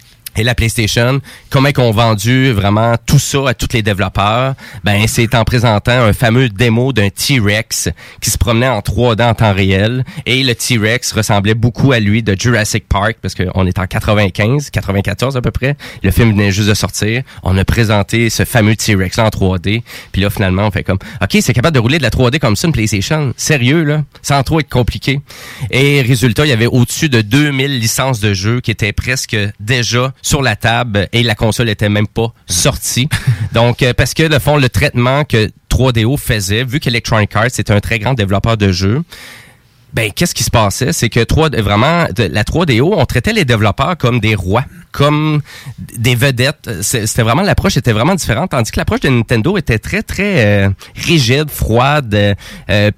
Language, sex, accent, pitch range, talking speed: French, male, Canadian, 105-130 Hz, 195 wpm